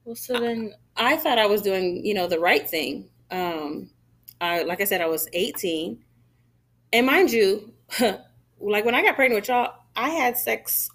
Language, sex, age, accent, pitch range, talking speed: English, female, 30-49, American, 150-210 Hz, 185 wpm